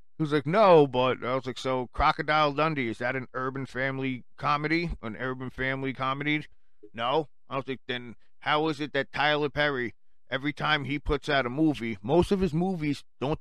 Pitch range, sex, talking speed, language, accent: 110-150 Hz, male, 195 wpm, English, American